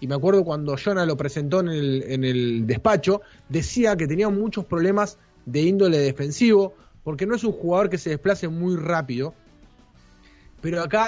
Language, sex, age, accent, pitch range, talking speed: Spanish, male, 20-39, Argentinian, 140-195 Hz, 175 wpm